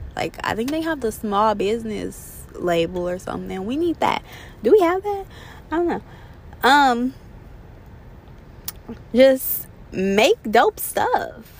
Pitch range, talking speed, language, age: 200-330 Hz, 140 wpm, English, 20-39